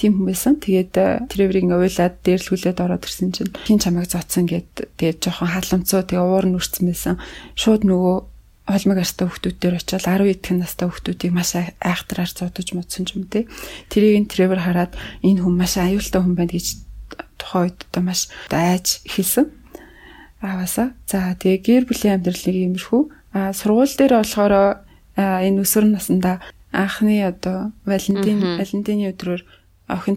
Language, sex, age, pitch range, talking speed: English, female, 30-49, 180-210 Hz, 125 wpm